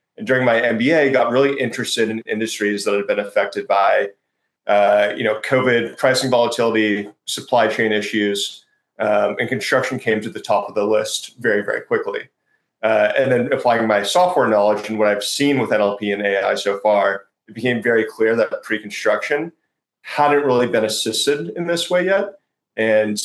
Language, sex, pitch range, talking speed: English, male, 105-130 Hz, 175 wpm